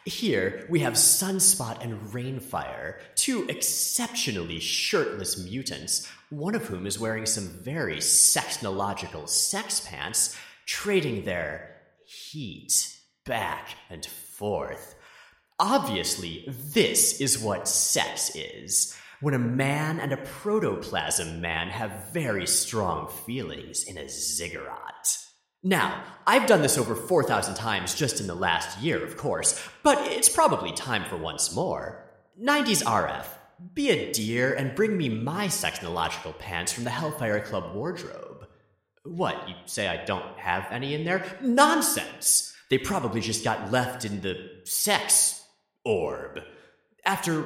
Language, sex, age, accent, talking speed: English, male, 30-49, American, 130 wpm